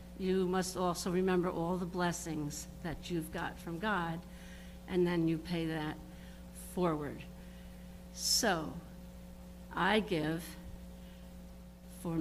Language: English